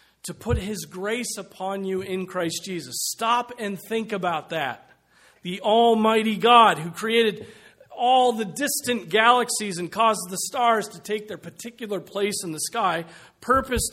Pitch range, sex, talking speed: 170-225 Hz, male, 155 wpm